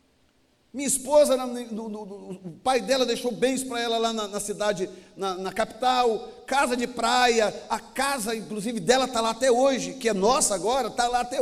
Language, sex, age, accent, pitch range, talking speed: Portuguese, male, 40-59, Brazilian, 175-240 Hz, 180 wpm